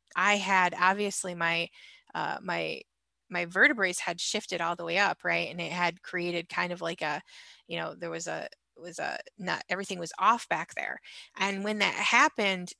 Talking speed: 190 wpm